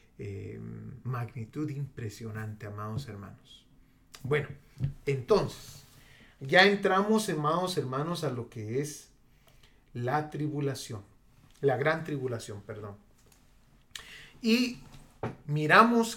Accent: Mexican